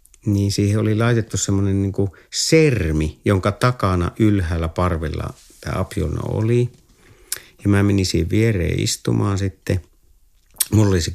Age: 50-69